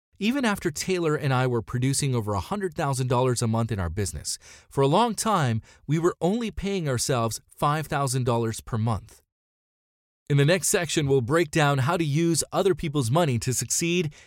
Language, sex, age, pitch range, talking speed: English, male, 30-49, 115-165 Hz, 170 wpm